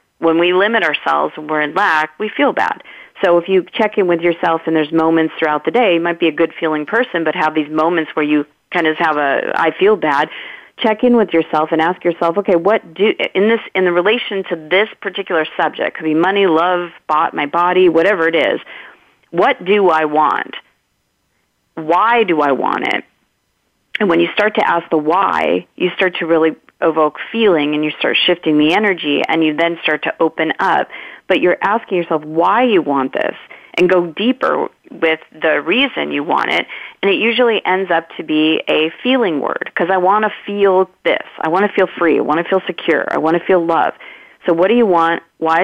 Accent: American